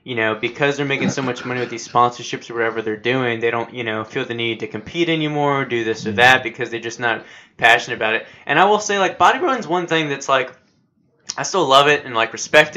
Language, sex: English, male